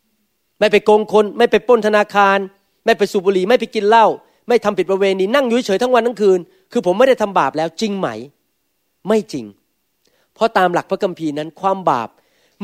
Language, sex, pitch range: Thai, male, 150-210 Hz